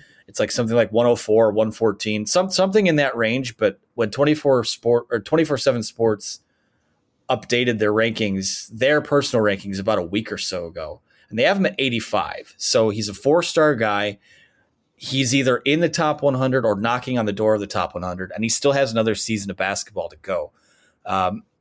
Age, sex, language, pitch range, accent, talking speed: 30-49, male, English, 105-130 Hz, American, 185 wpm